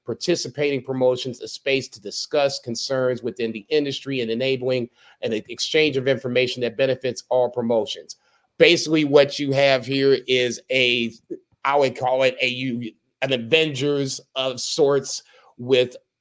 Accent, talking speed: American, 135 wpm